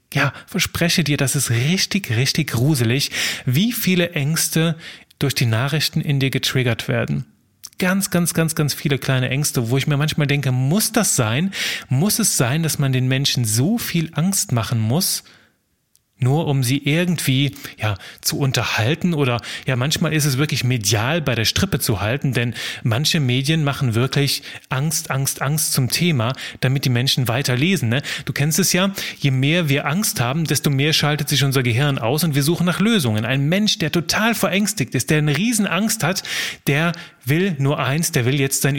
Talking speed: 185 wpm